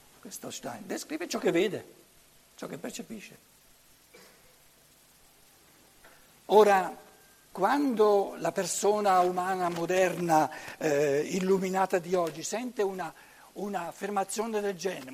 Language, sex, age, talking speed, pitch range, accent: Italian, male, 60-79, 90 wpm, 135-195 Hz, native